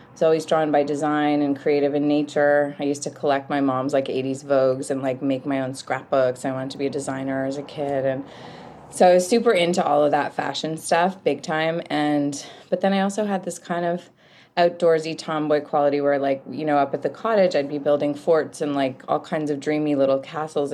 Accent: American